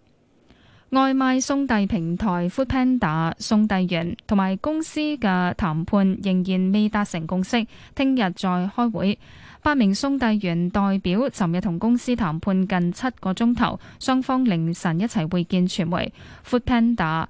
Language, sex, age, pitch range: Chinese, female, 10-29, 185-240 Hz